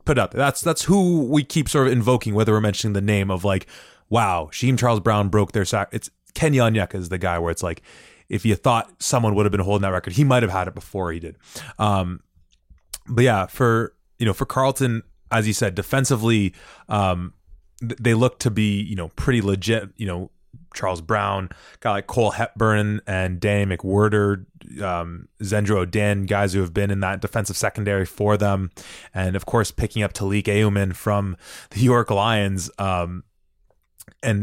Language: English